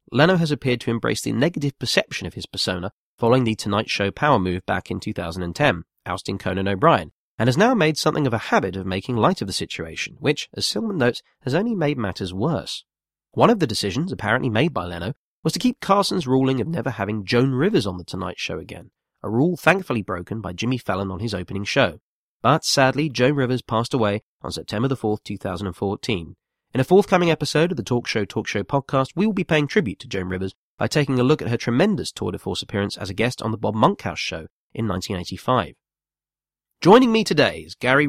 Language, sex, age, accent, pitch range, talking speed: English, male, 30-49, British, 105-155 Hz, 215 wpm